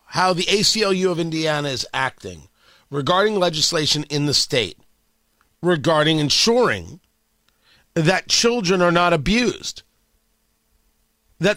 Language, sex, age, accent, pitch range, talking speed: English, male, 40-59, American, 185-255 Hz, 105 wpm